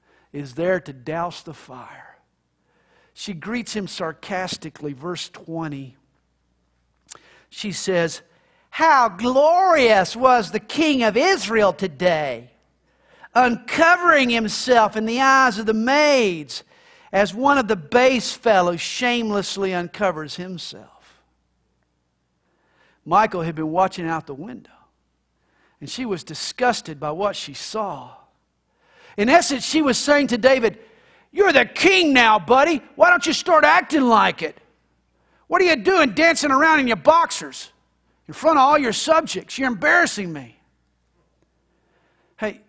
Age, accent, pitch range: 50-69, American, 155-255 Hz